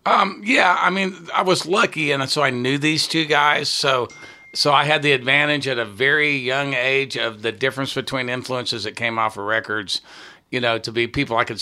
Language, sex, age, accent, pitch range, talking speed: English, male, 50-69, American, 115-145 Hz, 215 wpm